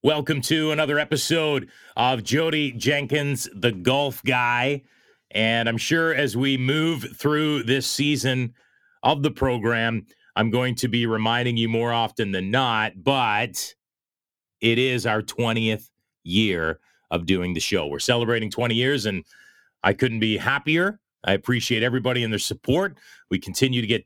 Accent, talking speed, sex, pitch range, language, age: American, 150 wpm, male, 100-130 Hz, English, 30-49